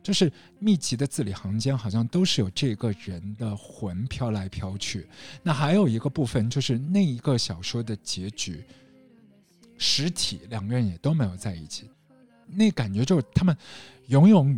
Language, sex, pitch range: Chinese, male, 105-155 Hz